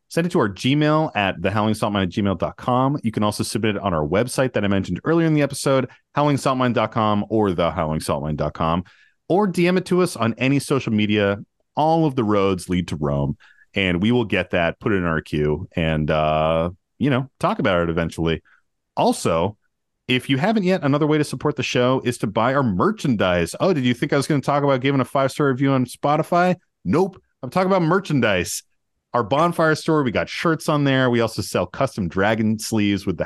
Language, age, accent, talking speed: English, 30-49, American, 205 wpm